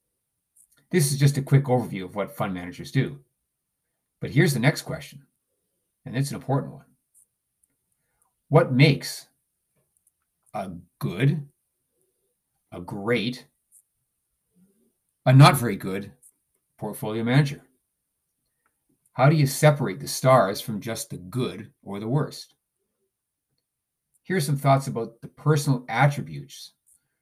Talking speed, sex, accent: 115 wpm, male, American